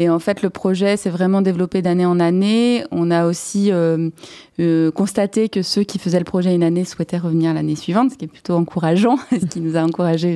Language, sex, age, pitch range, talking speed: French, female, 20-39, 170-200 Hz, 225 wpm